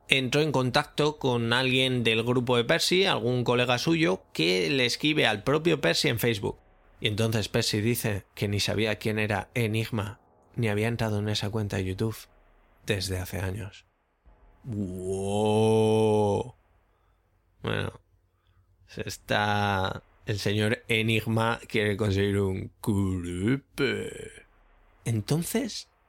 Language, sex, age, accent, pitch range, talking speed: Spanish, male, 20-39, Spanish, 100-125 Hz, 120 wpm